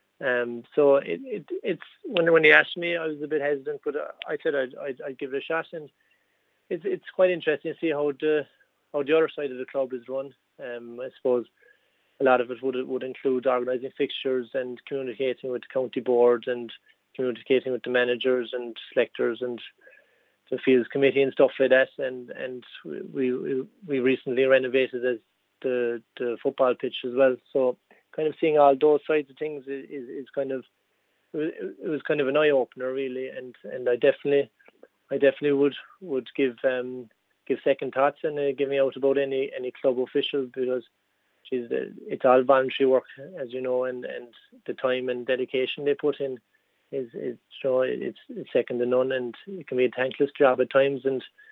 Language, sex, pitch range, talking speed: English, male, 125-145 Hz, 200 wpm